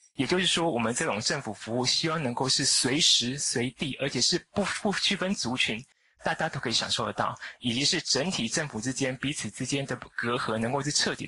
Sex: male